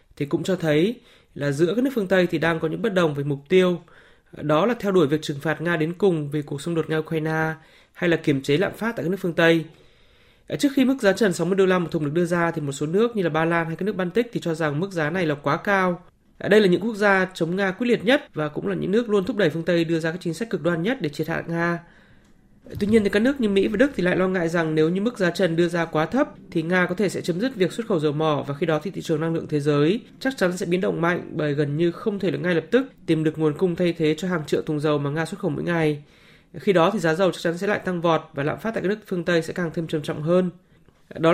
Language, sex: Vietnamese, male